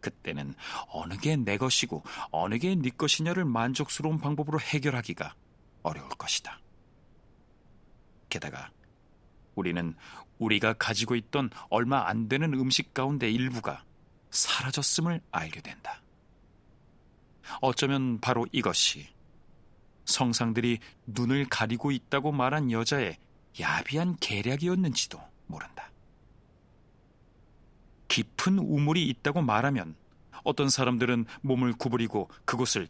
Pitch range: 115-140 Hz